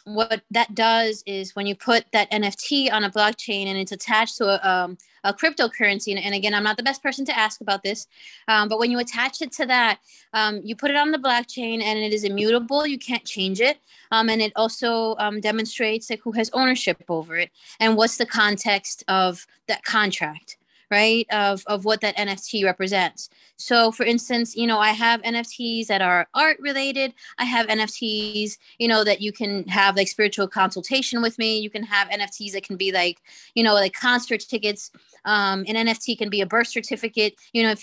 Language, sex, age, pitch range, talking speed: English, female, 20-39, 200-235 Hz, 205 wpm